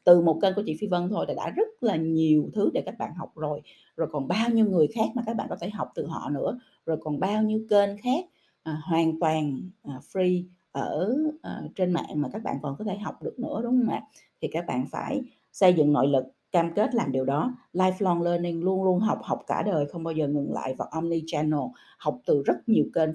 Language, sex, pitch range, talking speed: Vietnamese, female, 155-220 Hz, 245 wpm